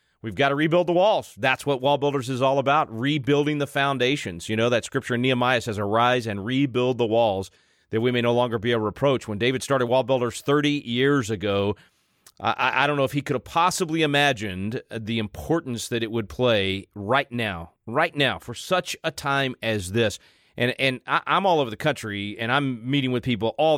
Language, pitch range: English, 110-140 Hz